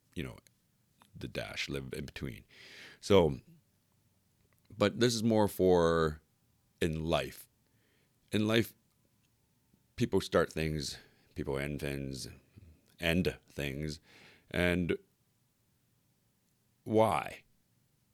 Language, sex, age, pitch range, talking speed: English, male, 40-59, 70-105 Hz, 90 wpm